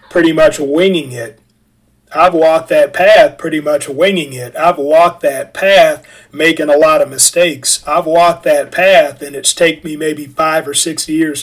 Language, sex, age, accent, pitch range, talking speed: English, male, 40-59, American, 150-180 Hz, 180 wpm